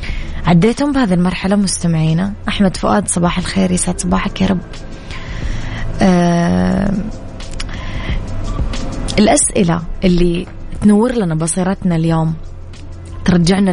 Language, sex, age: Arabic, female, 20-39